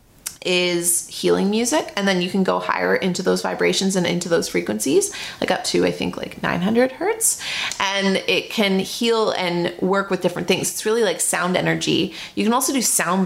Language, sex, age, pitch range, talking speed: English, female, 30-49, 165-195 Hz, 195 wpm